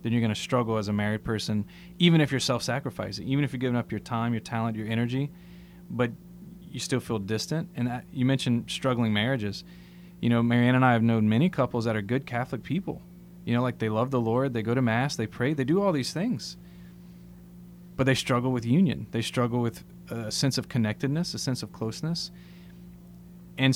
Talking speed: 215 wpm